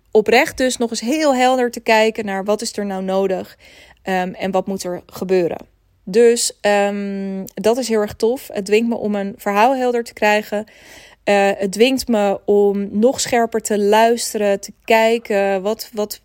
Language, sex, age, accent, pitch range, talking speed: Dutch, female, 20-39, Dutch, 200-235 Hz, 175 wpm